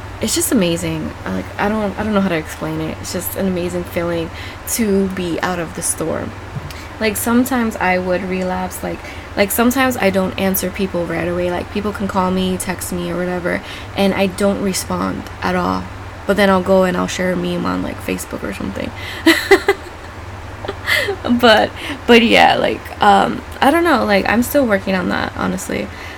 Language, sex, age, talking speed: English, female, 20-39, 190 wpm